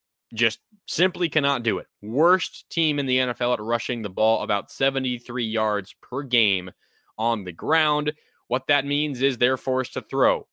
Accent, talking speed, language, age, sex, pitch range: American, 170 wpm, English, 20-39, male, 120-150 Hz